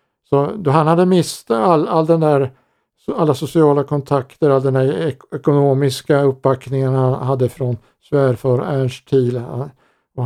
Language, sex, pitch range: Swedish, male, 125-150 Hz